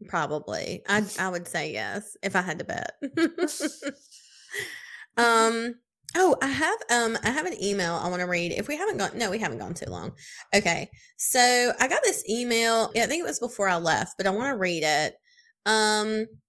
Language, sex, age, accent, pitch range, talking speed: English, female, 20-39, American, 180-240 Hz, 195 wpm